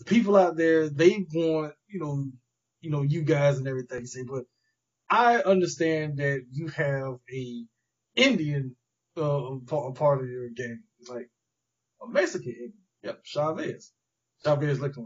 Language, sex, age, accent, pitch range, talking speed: English, male, 20-39, American, 130-180 Hz, 155 wpm